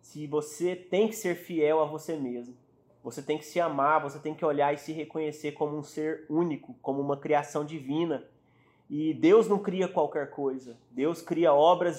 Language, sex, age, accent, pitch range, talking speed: Portuguese, male, 30-49, Brazilian, 150-190 Hz, 190 wpm